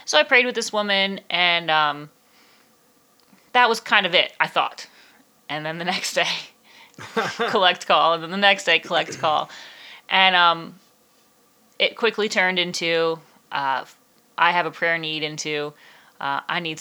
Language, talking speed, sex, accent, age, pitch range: English, 160 wpm, female, American, 30-49, 155-215 Hz